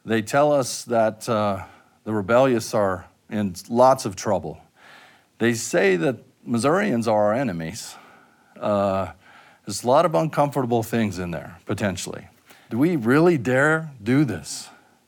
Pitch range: 105-130 Hz